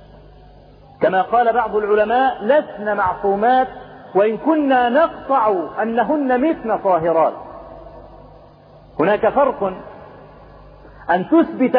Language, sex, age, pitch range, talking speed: Arabic, male, 40-59, 210-265 Hz, 80 wpm